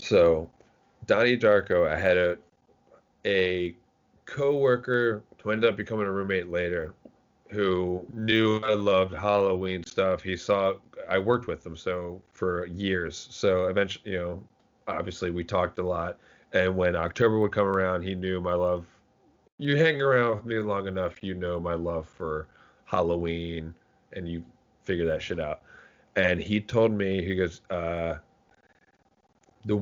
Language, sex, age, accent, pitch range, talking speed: English, male, 30-49, American, 85-110 Hz, 155 wpm